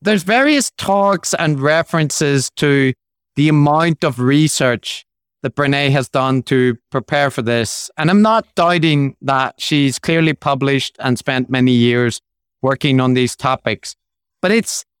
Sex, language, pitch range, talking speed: male, English, 135-170 Hz, 145 wpm